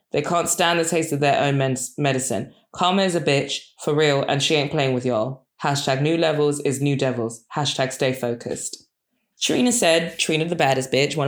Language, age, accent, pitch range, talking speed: English, 20-39, British, 140-175 Hz, 200 wpm